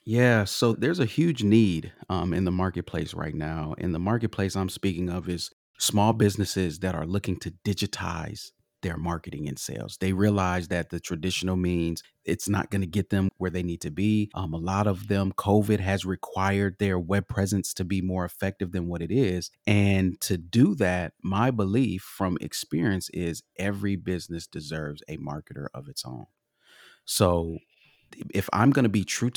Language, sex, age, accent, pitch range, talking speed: English, male, 30-49, American, 90-105 Hz, 185 wpm